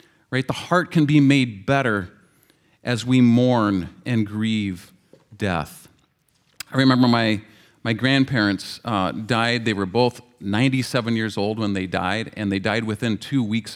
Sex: male